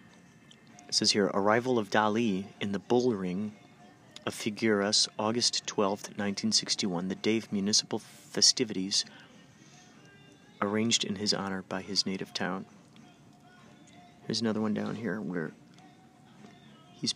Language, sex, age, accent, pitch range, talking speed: English, male, 30-49, American, 100-115 Hz, 120 wpm